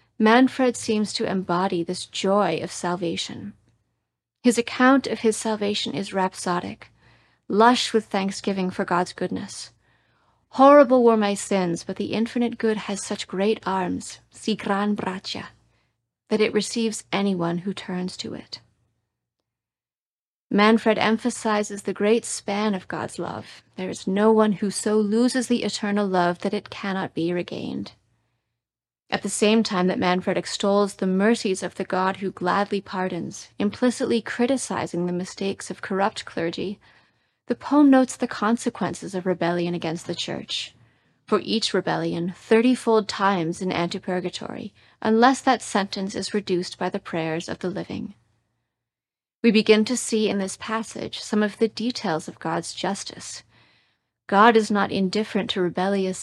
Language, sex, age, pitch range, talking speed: English, female, 30-49, 175-220 Hz, 145 wpm